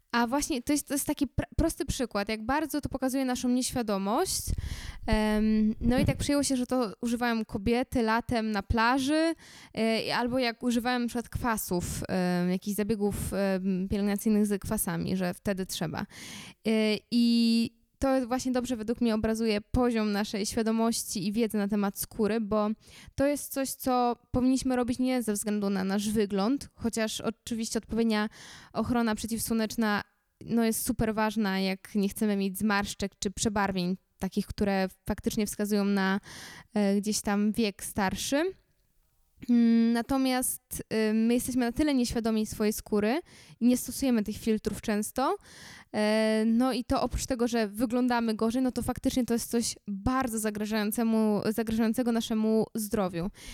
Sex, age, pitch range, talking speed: female, 10-29, 210-245 Hz, 145 wpm